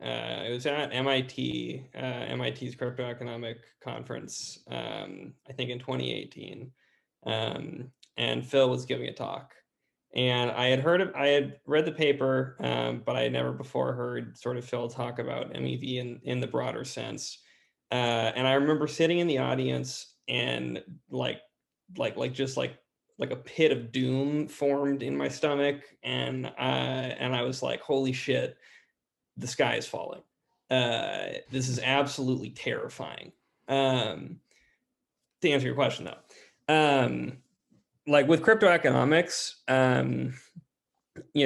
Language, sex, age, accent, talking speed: English, male, 20-39, American, 150 wpm